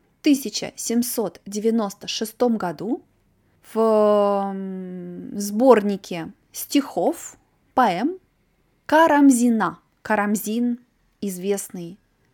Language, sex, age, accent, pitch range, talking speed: Russian, female, 20-39, native, 205-255 Hz, 50 wpm